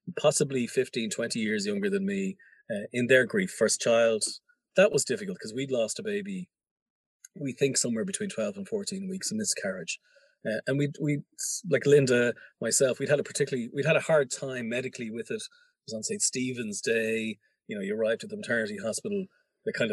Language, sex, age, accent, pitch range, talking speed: English, male, 30-49, Irish, 125-210 Hz, 200 wpm